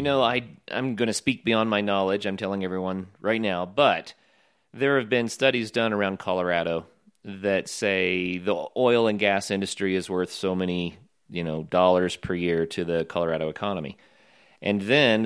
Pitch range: 90-115 Hz